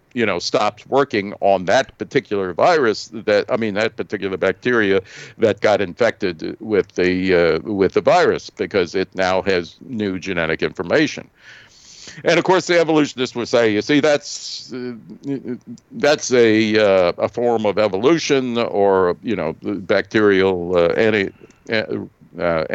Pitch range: 95-120 Hz